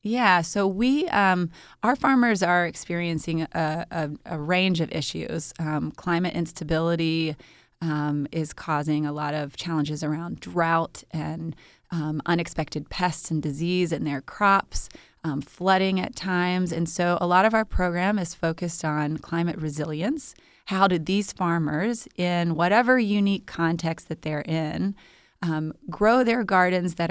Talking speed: 150 wpm